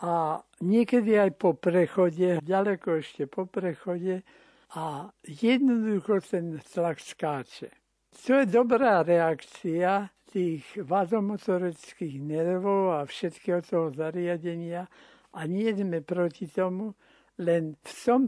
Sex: male